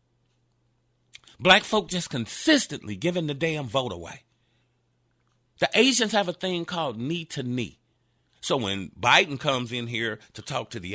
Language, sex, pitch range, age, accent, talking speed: English, male, 120-160 Hz, 40-59, American, 155 wpm